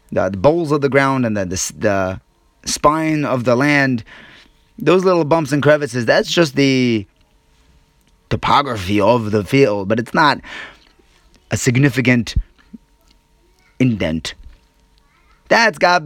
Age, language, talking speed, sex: 30-49, English, 130 wpm, male